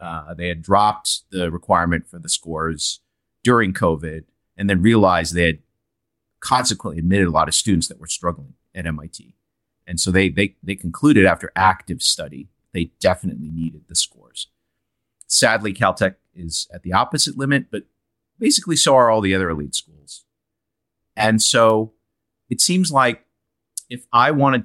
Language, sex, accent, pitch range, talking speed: English, male, American, 85-110 Hz, 160 wpm